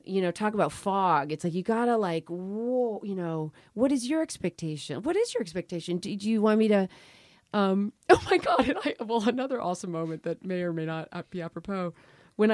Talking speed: 215 wpm